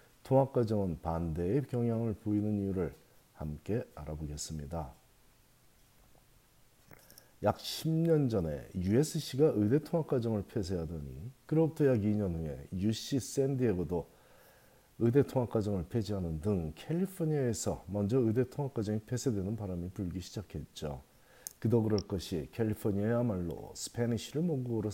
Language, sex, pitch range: Korean, male, 95-130 Hz